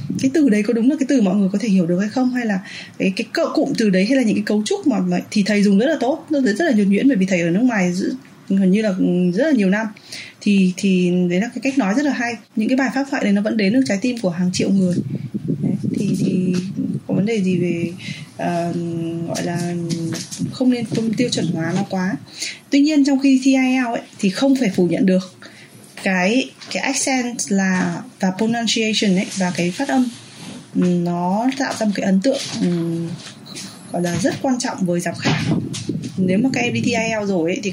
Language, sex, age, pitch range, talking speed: Vietnamese, female, 20-39, 185-250 Hz, 230 wpm